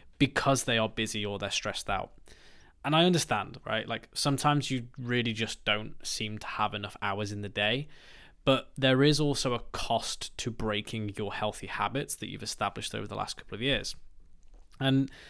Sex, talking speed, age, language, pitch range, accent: male, 185 wpm, 20-39, English, 105-125 Hz, British